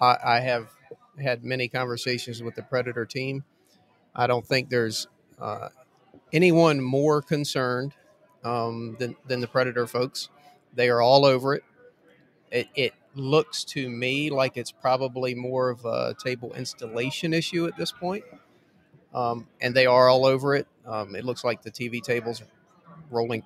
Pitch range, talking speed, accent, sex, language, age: 120-140 Hz, 155 wpm, American, male, English, 40-59